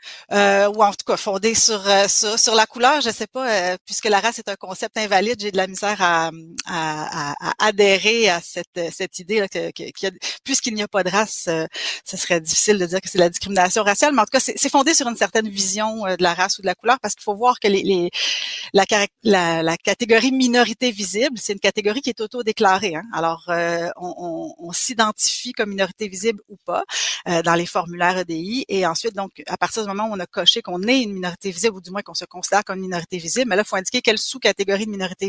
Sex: female